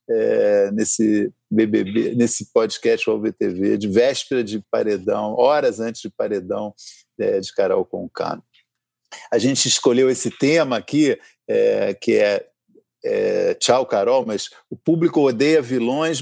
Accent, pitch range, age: Brazilian, 130-180 Hz, 50-69